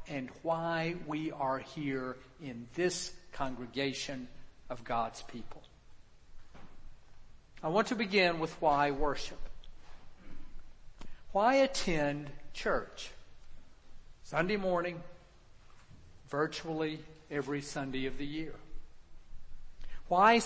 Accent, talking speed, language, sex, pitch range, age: American, 90 wpm, English, male, 145-190 Hz, 50-69